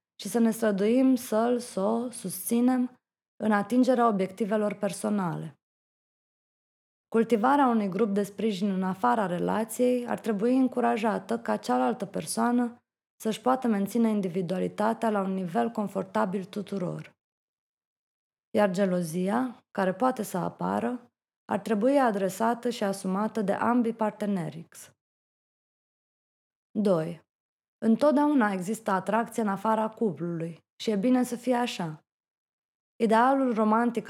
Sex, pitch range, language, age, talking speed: female, 195-235 Hz, Romanian, 20-39, 115 wpm